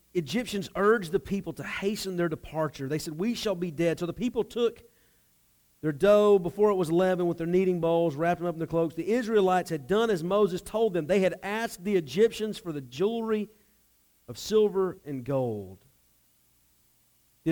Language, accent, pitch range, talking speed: English, American, 125-200 Hz, 190 wpm